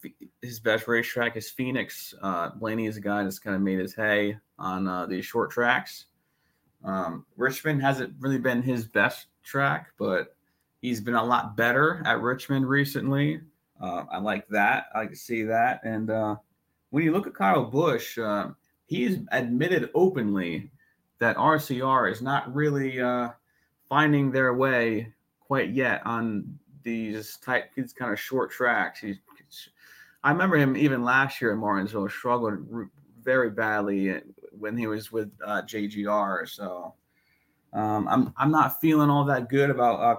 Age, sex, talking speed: 20-39, male, 160 wpm